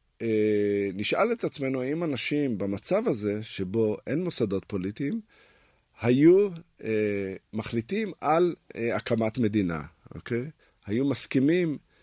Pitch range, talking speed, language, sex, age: 95-125 Hz, 105 wpm, Hebrew, male, 50-69